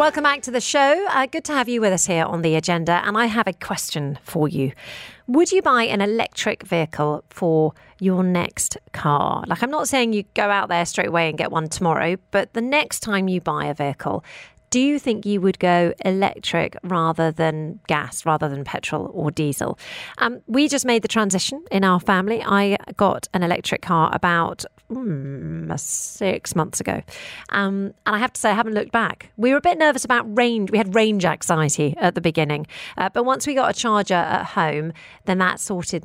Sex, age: female, 40-59